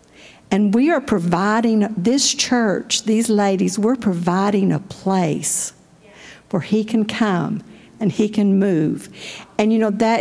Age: 50-69